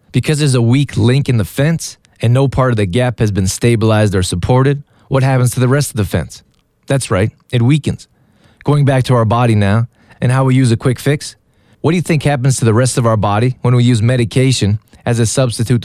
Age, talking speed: 20-39, 235 wpm